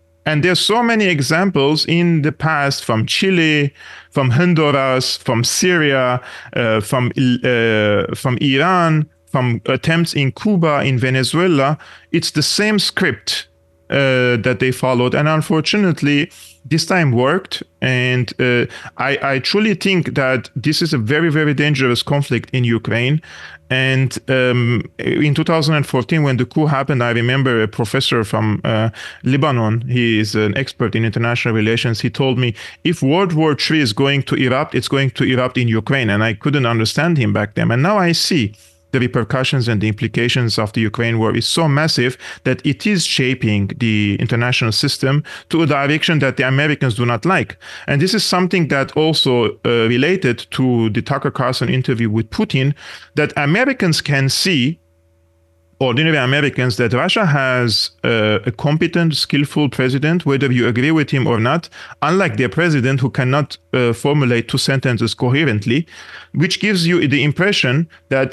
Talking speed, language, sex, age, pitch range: 160 wpm, English, male, 40-59, 120-155 Hz